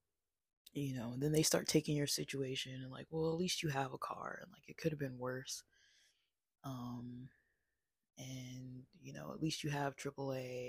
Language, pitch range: English, 135-150 Hz